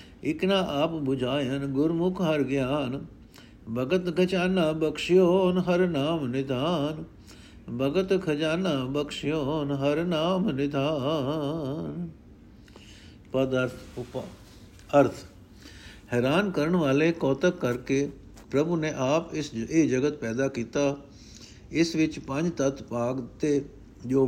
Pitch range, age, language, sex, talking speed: 115-155 Hz, 60-79, Punjabi, male, 90 wpm